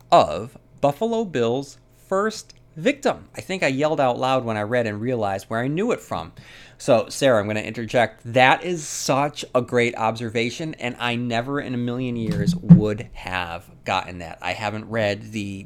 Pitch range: 100-125 Hz